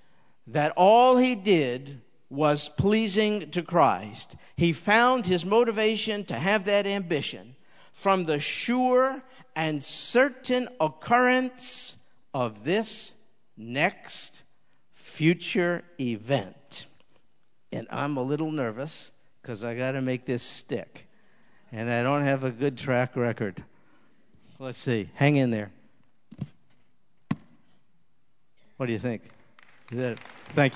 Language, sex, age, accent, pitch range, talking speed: English, male, 50-69, American, 130-215 Hz, 110 wpm